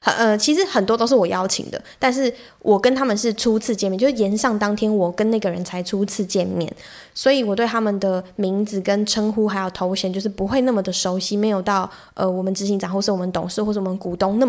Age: 20-39